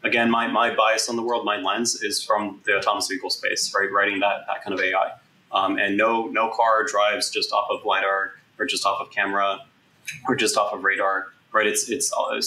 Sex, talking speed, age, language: male, 220 wpm, 20-39, English